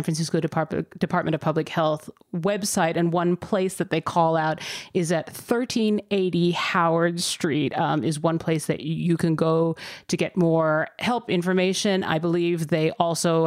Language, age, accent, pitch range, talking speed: English, 30-49, American, 160-180 Hz, 160 wpm